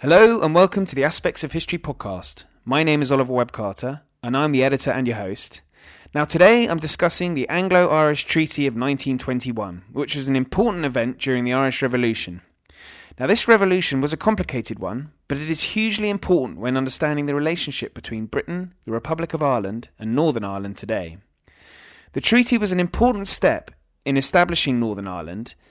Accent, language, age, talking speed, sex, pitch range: British, English, 20-39, 175 wpm, male, 115-160 Hz